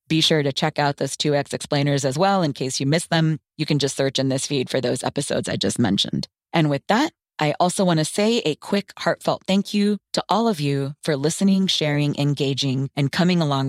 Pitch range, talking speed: 140-165 Hz, 230 wpm